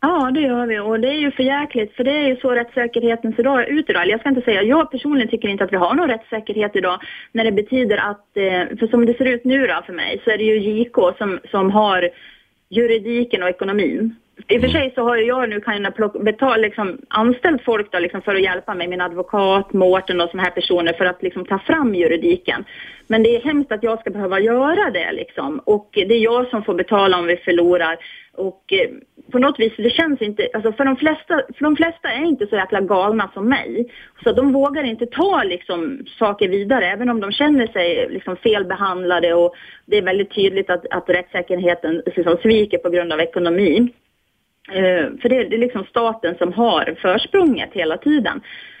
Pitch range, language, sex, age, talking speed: 195-265 Hz, Swedish, female, 30-49, 220 wpm